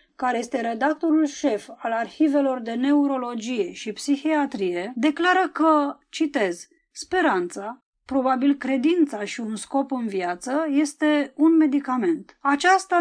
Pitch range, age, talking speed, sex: 240-295 Hz, 20-39, 115 wpm, female